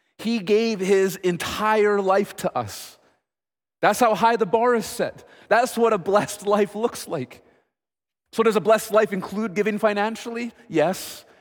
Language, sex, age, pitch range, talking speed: English, male, 30-49, 165-215 Hz, 160 wpm